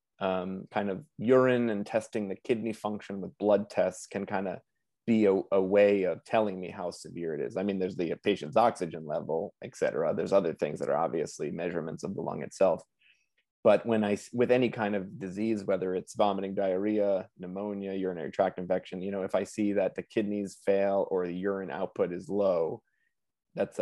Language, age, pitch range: English, 30-49, 95-110 Hz